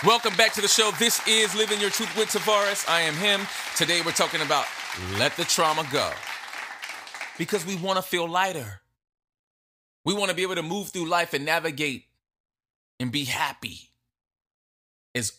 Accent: American